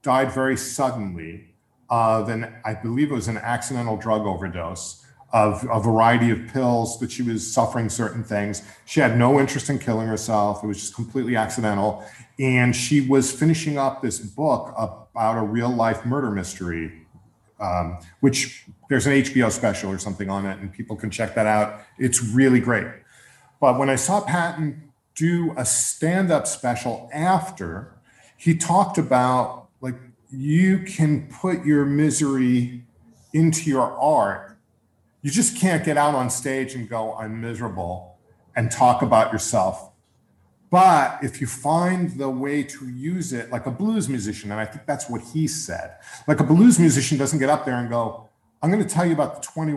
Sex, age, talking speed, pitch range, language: male, 40-59, 170 wpm, 115-150 Hz, English